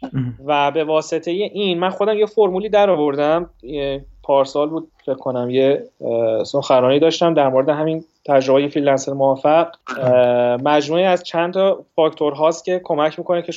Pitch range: 140-175 Hz